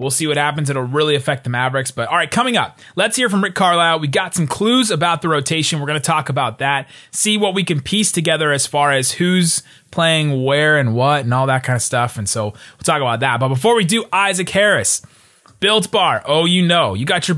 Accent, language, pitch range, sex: American, English, 135-175 Hz, male